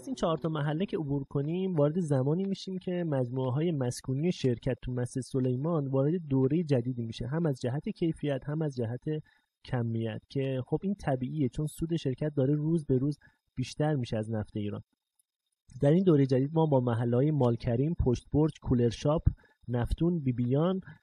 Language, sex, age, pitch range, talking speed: Persian, male, 30-49, 125-160 Hz, 170 wpm